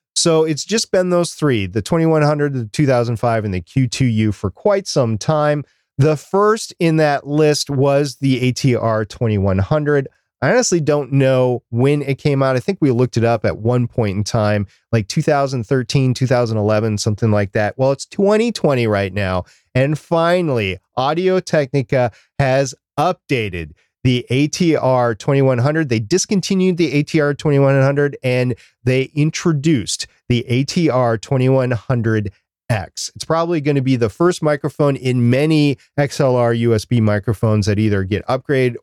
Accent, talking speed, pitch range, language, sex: American, 135 wpm, 115-150 Hz, English, male